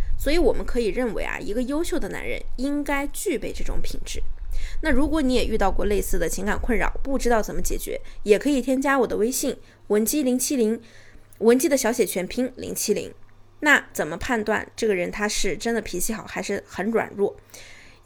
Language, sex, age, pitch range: Chinese, female, 20-39, 215-310 Hz